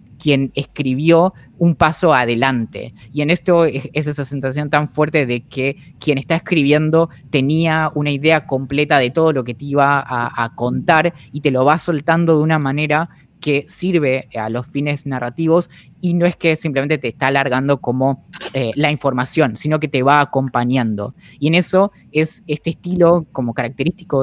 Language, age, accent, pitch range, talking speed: Spanish, 20-39, Argentinian, 130-160 Hz, 175 wpm